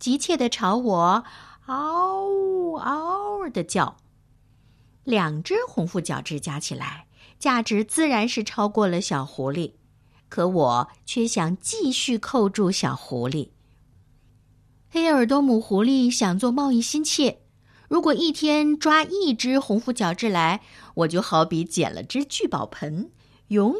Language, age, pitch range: Chinese, 60-79, 175-285 Hz